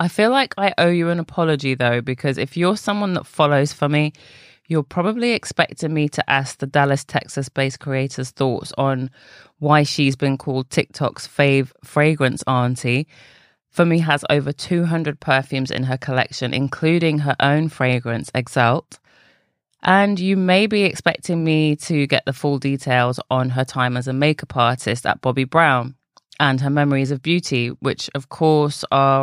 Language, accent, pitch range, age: English, British, 130-160 Hz, 20-39